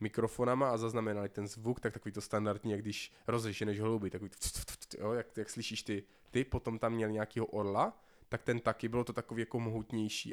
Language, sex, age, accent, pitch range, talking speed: Czech, male, 20-39, native, 115-160 Hz, 200 wpm